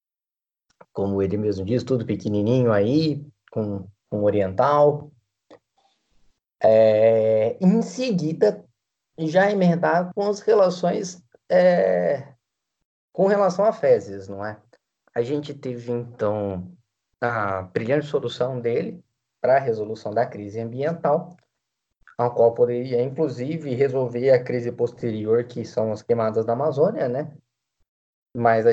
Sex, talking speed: male, 115 wpm